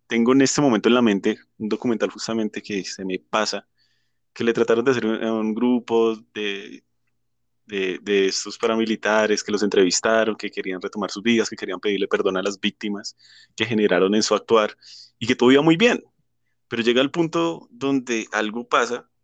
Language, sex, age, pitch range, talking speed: Spanish, male, 20-39, 95-115 Hz, 190 wpm